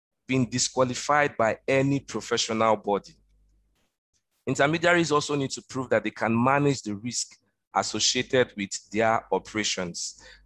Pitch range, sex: 110-140 Hz, male